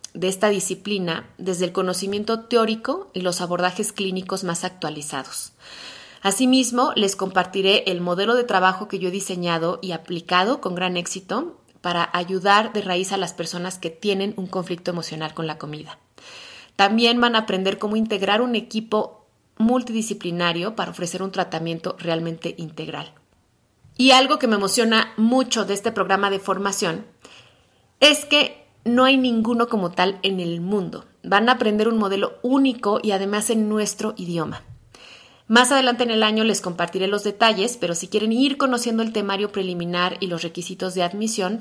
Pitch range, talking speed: 175-225 Hz, 165 wpm